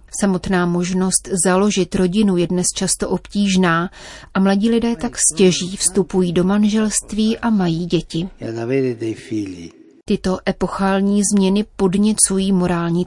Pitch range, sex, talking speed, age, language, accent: 180-210 Hz, female, 110 wpm, 30-49, Czech, native